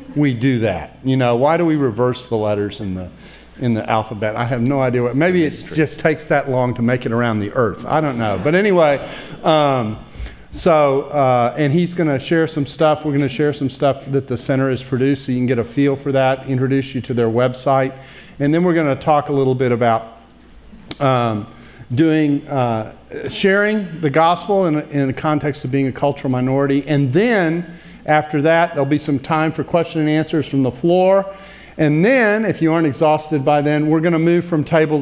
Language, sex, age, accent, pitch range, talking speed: English, male, 50-69, American, 130-165 Hz, 210 wpm